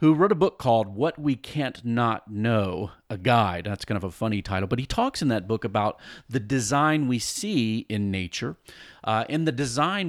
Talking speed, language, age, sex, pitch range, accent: 210 wpm, English, 40-59, male, 105-140 Hz, American